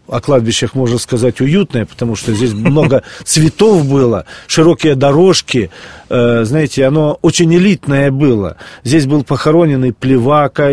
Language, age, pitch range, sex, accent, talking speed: Russian, 40-59, 125-160 Hz, male, native, 130 wpm